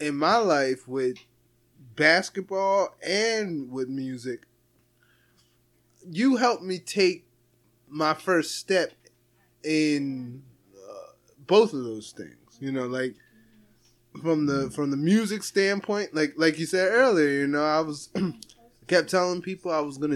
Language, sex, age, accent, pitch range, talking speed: English, male, 20-39, American, 130-175 Hz, 135 wpm